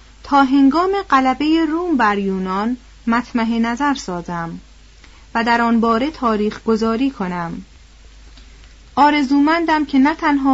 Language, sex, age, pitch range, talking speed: Persian, female, 30-49, 200-270 Hz, 115 wpm